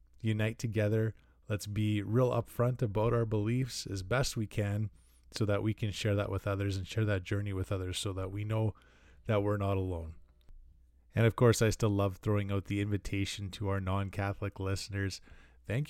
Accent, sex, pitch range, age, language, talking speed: American, male, 95-110 Hz, 20-39, English, 190 wpm